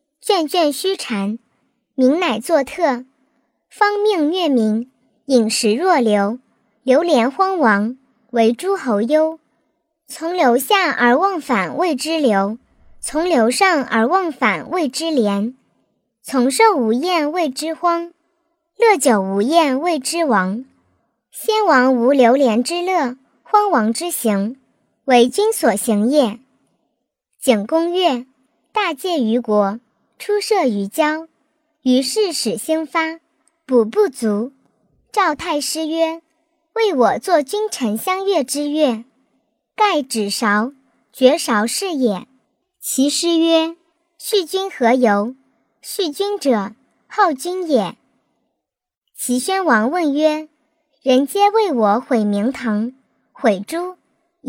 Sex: male